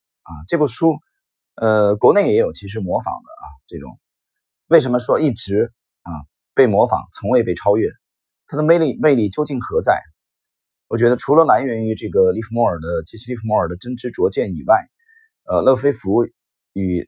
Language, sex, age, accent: Chinese, male, 30-49, native